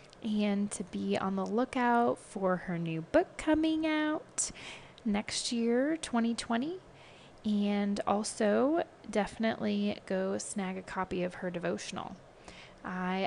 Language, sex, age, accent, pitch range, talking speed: English, female, 20-39, American, 190-245 Hz, 120 wpm